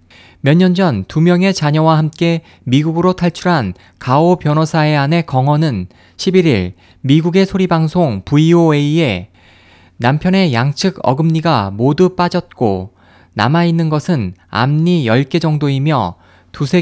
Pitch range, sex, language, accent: 110-175 Hz, male, Korean, native